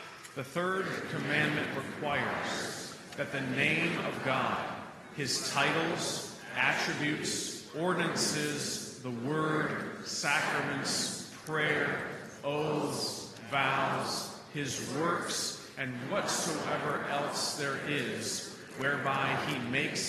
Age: 40-59